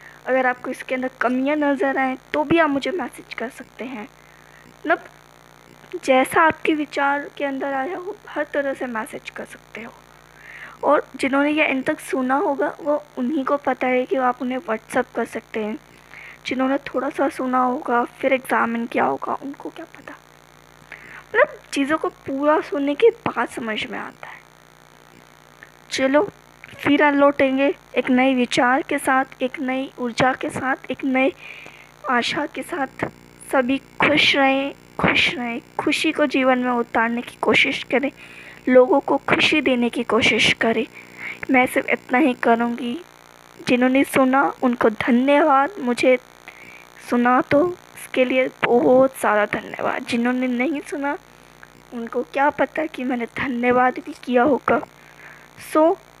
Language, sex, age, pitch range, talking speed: Hindi, female, 20-39, 240-285 Hz, 150 wpm